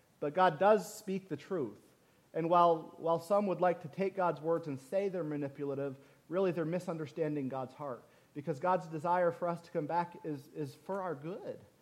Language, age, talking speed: English, 40-59, 195 wpm